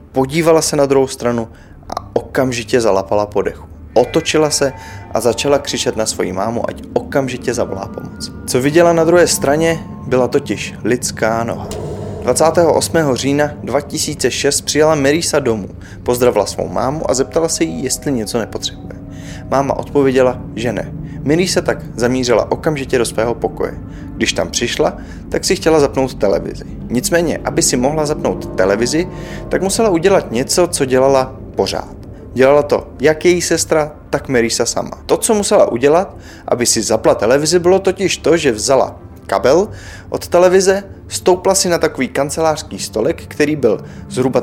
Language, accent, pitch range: Czech, native, 115-165 Hz